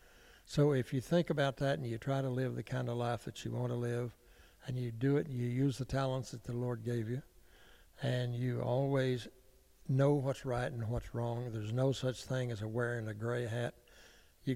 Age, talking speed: 60-79, 220 wpm